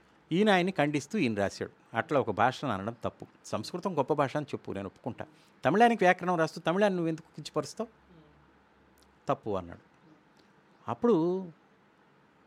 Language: Telugu